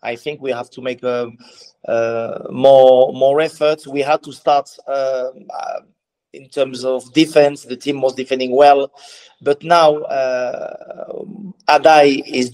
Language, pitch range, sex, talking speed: English, 125-145 Hz, male, 145 wpm